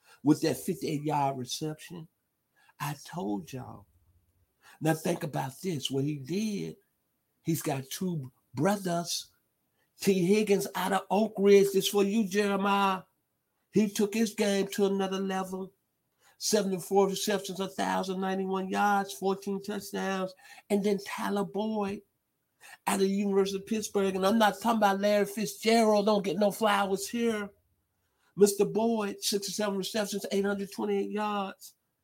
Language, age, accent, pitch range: English, 50-69, American, 170-205 Hz